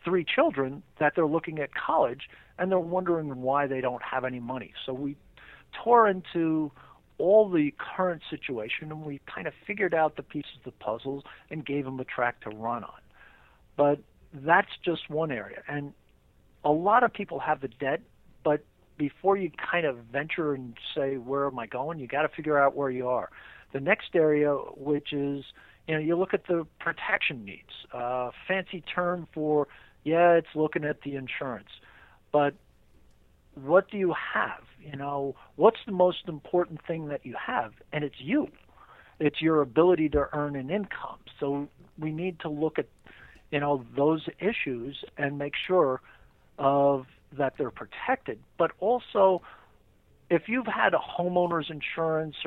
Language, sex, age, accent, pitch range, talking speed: English, male, 50-69, American, 140-175 Hz, 170 wpm